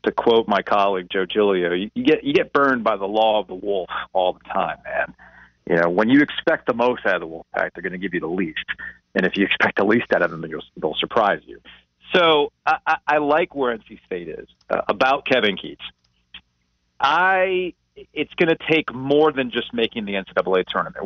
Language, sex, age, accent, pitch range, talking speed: English, male, 40-59, American, 90-125 Hz, 225 wpm